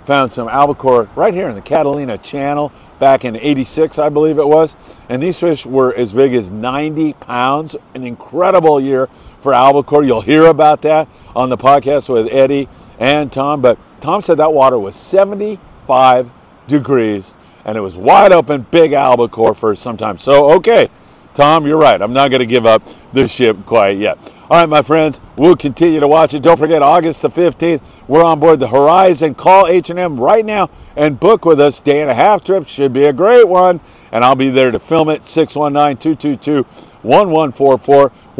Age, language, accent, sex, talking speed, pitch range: 50-69, English, American, male, 185 wpm, 125-160 Hz